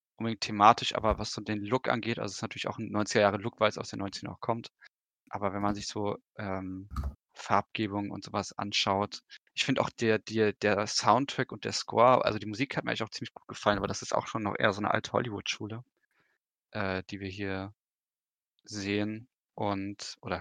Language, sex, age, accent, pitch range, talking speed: German, male, 20-39, German, 100-120 Hz, 210 wpm